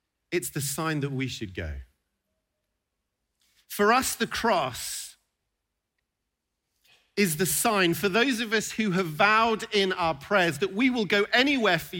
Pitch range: 130-220 Hz